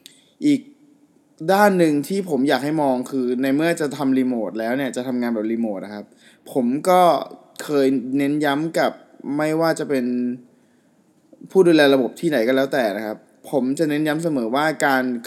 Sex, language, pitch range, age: male, Thai, 125-155 Hz, 20-39